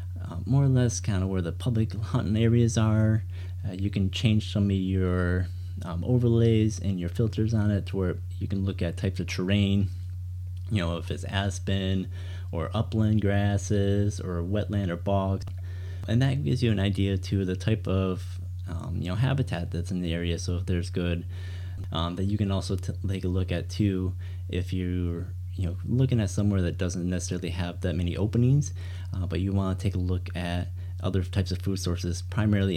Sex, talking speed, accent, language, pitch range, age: male, 200 wpm, American, English, 90-100 Hz, 30-49